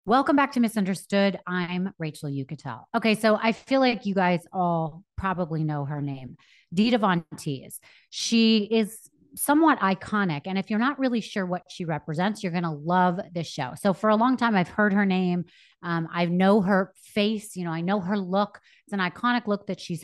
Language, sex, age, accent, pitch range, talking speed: English, female, 30-49, American, 165-215 Hz, 195 wpm